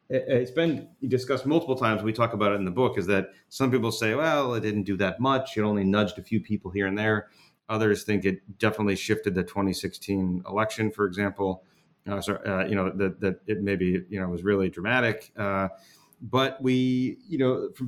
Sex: male